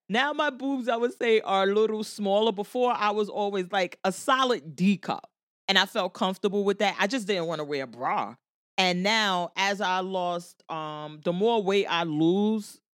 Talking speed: 200 wpm